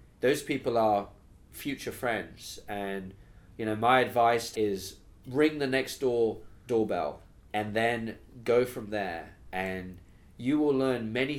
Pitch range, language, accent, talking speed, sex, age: 95-115 Hz, English, British, 135 wpm, male, 20-39